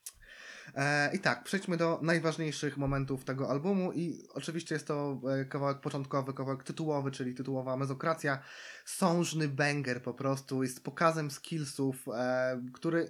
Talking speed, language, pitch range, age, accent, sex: 125 wpm, Polish, 130-155 Hz, 20-39, native, male